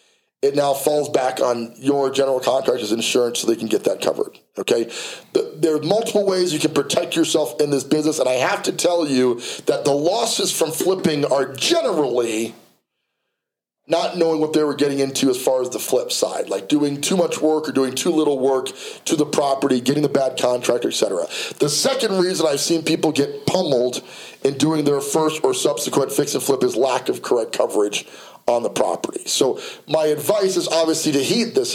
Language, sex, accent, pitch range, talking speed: English, male, American, 145-195 Hz, 195 wpm